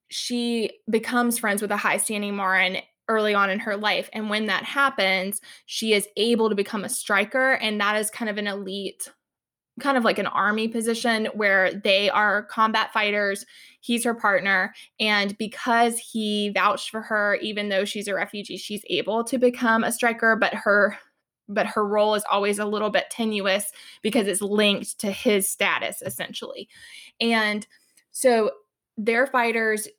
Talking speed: 170 wpm